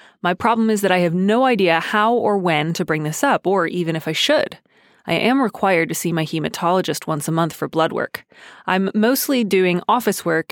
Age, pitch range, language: 20-39, 175-230 Hz, English